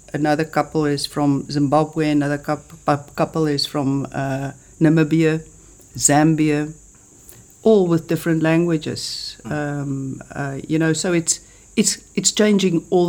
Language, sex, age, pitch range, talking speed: English, female, 60-79, 135-160 Hz, 120 wpm